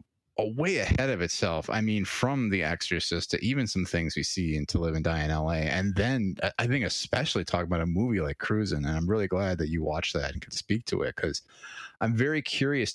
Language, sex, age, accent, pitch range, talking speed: English, male, 30-49, American, 85-110 Hz, 230 wpm